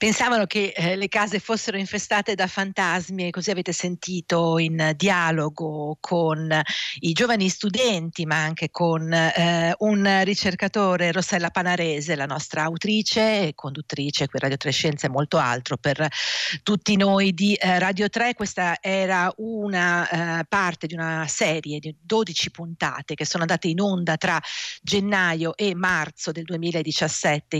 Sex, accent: female, native